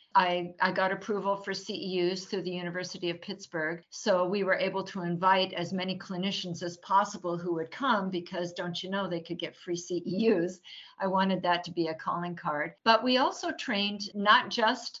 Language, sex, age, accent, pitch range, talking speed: English, female, 50-69, American, 180-210 Hz, 190 wpm